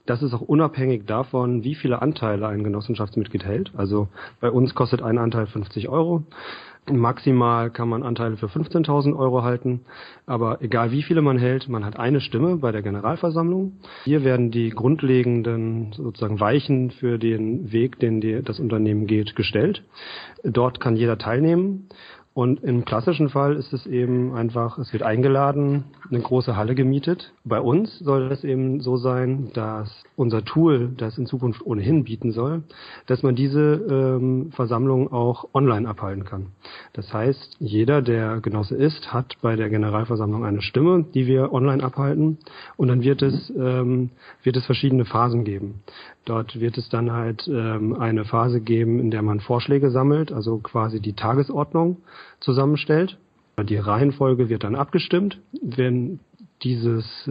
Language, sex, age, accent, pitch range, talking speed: German, male, 40-59, German, 115-140 Hz, 155 wpm